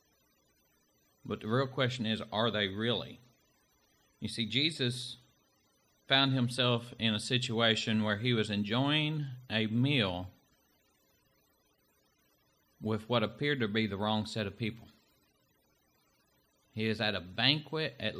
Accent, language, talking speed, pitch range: American, English, 125 wpm, 105-125 Hz